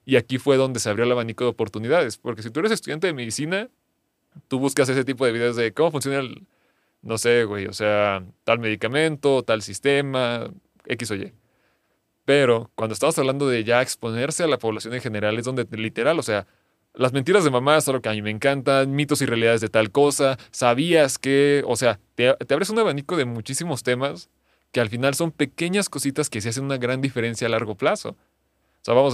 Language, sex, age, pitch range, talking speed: Spanish, male, 30-49, 110-135 Hz, 210 wpm